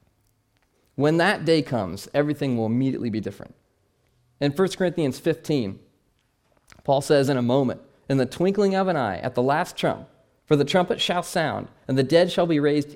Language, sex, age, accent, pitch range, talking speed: English, male, 40-59, American, 125-170 Hz, 180 wpm